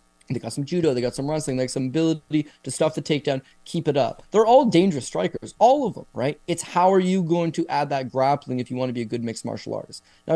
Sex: male